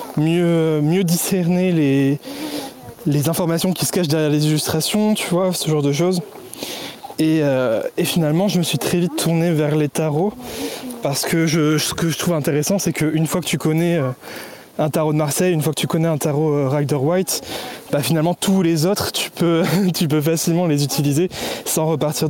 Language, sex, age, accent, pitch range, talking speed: French, male, 20-39, French, 145-175 Hz, 195 wpm